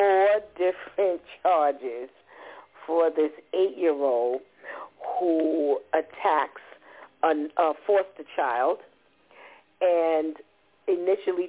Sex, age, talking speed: female, 50-69, 75 wpm